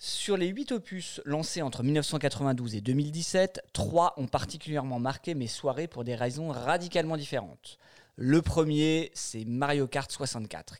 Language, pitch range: French, 120-160 Hz